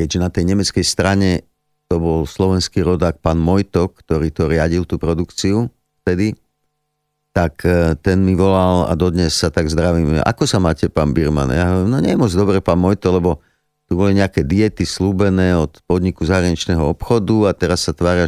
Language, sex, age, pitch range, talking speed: Slovak, male, 50-69, 85-100 Hz, 175 wpm